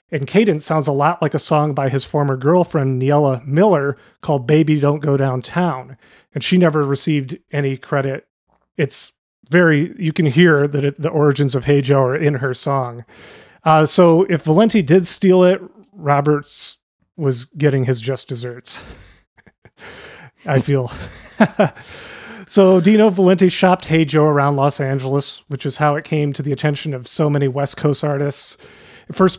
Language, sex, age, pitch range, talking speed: English, male, 30-49, 135-170 Hz, 160 wpm